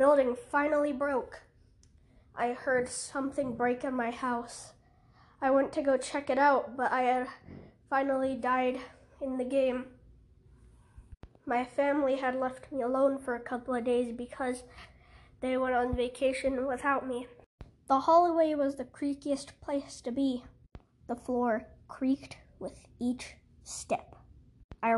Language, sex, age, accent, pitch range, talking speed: English, female, 20-39, American, 240-275 Hz, 140 wpm